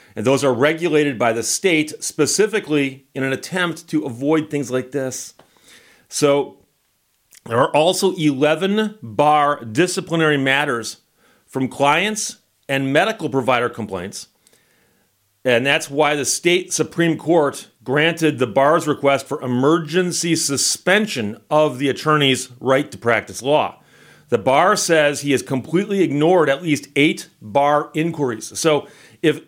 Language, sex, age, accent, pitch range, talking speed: English, male, 40-59, American, 135-165 Hz, 130 wpm